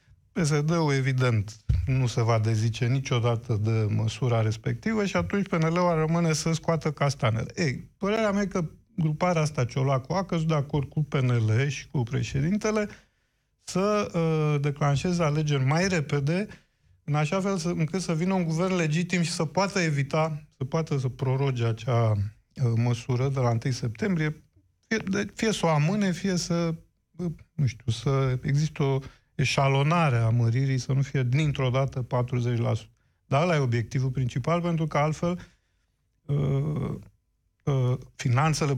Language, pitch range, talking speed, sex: Romanian, 125-165 Hz, 155 wpm, male